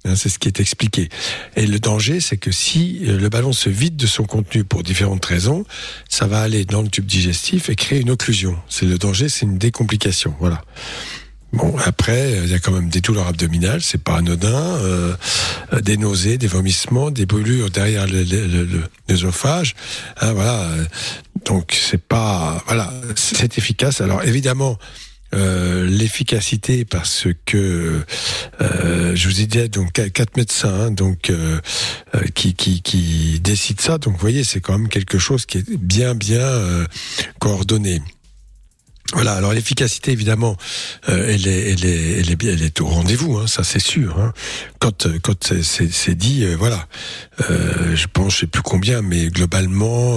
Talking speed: 175 wpm